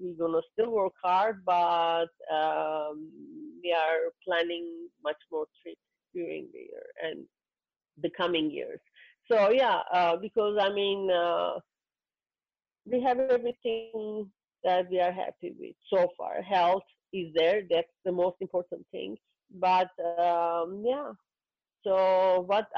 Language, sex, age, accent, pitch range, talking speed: English, female, 50-69, Indian, 175-220 Hz, 135 wpm